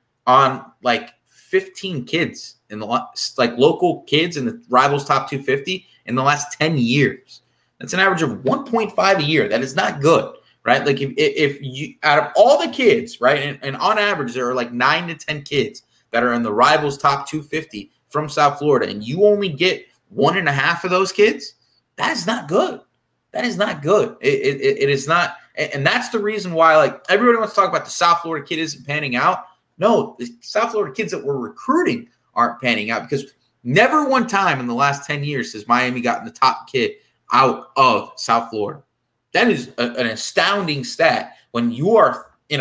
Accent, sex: American, male